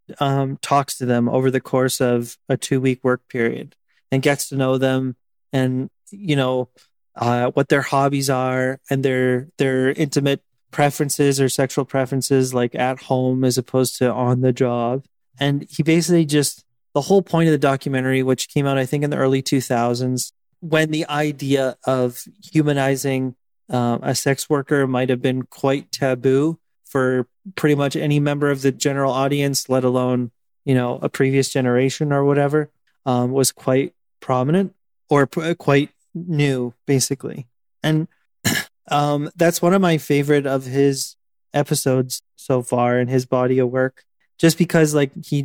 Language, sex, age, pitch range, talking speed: English, male, 30-49, 130-145 Hz, 165 wpm